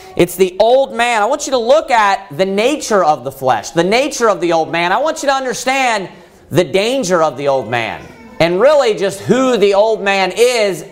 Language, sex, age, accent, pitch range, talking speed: English, male, 30-49, American, 160-230 Hz, 220 wpm